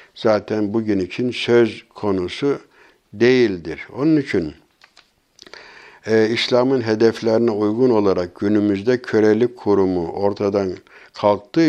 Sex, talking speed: male, 90 wpm